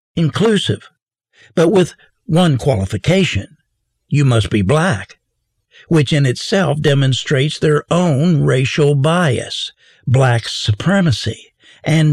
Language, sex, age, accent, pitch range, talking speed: English, male, 60-79, American, 130-175 Hz, 100 wpm